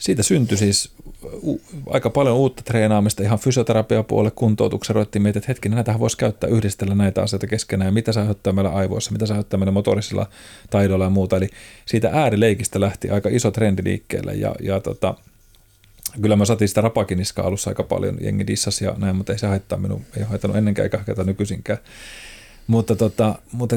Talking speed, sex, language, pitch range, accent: 175 wpm, male, Finnish, 100-110 Hz, native